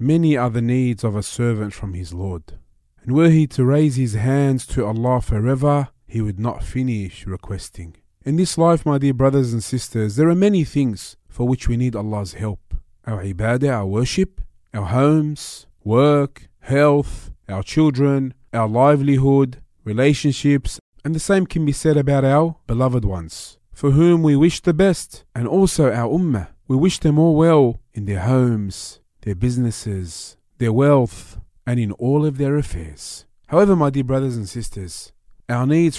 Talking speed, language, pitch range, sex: 170 wpm, English, 105-145 Hz, male